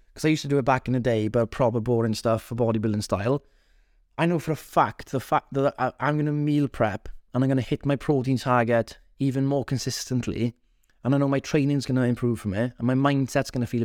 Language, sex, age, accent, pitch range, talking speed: English, male, 20-39, British, 120-140 Hz, 245 wpm